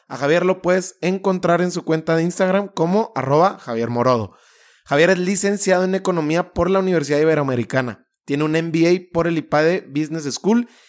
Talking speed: 170 wpm